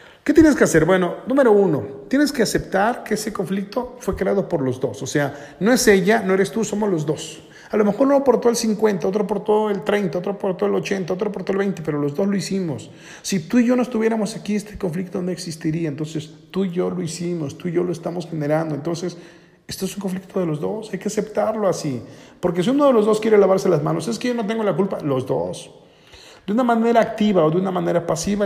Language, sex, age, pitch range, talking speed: Spanish, male, 40-59, 160-210 Hz, 250 wpm